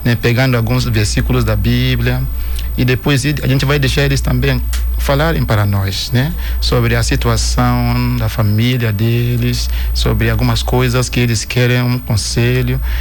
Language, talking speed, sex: Portuguese, 150 wpm, male